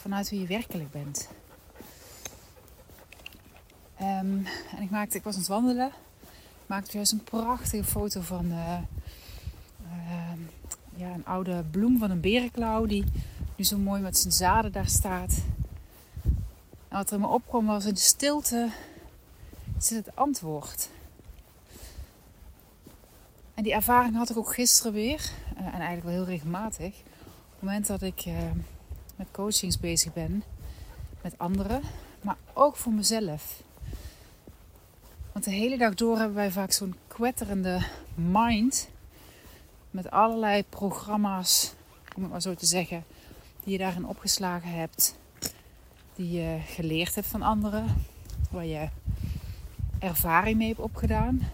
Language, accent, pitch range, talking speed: Dutch, Dutch, 130-215 Hz, 135 wpm